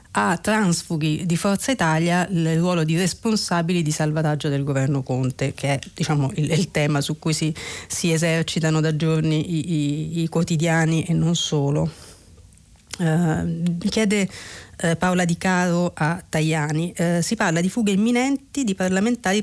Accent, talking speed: native, 160 wpm